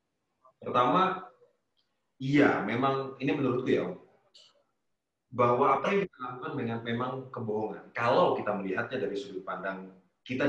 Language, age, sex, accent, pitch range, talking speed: English, 30-49, male, Indonesian, 120-170 Hz, 115 wpm